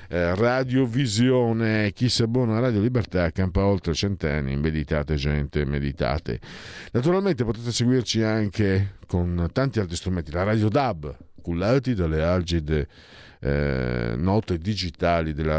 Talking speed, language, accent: 125 wpm, Italian, native